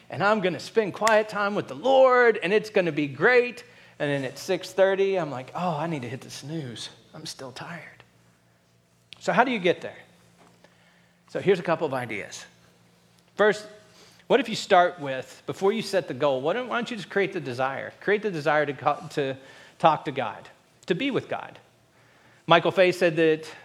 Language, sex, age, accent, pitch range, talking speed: English, male, 40-59, American, 135-190 Hz, 195 wpm